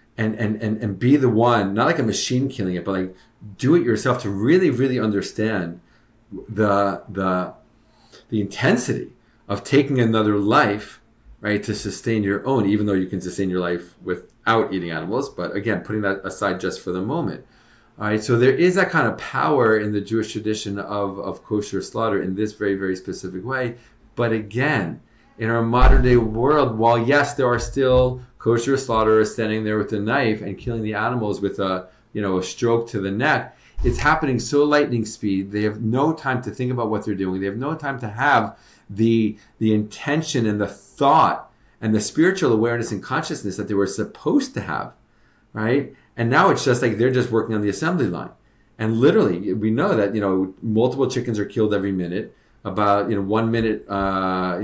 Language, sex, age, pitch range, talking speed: English, male, 40-59, 100-120 Hz, 200 wpm